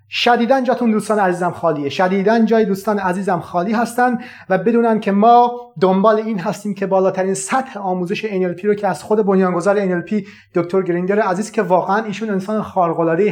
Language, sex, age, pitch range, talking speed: Persian, male, 30-49, 180-215 Hz, 165 wpm